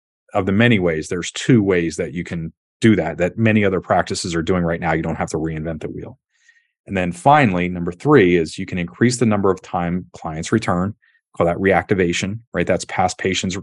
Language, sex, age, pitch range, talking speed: English, male, 40-59, 85-100 Hz, 215 wpm